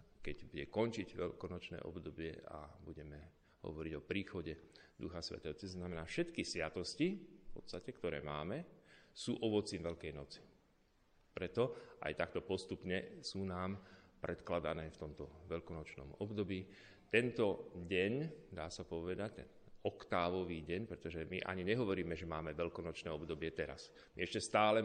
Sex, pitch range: male, 80-100 Hz